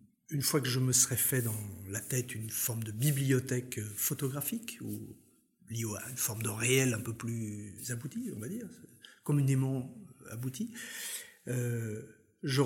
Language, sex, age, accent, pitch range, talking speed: French, male, 50-69, French, 115-155 Hz, 145 wpm